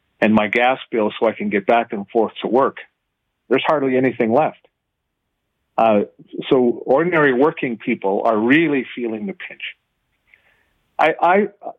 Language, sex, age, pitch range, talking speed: English, male, 50-69, 120-155 Hz, 145 wpm